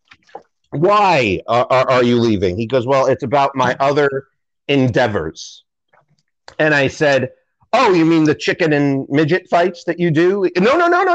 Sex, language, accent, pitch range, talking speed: male, English, American, 135-205 Hz, 170 wpm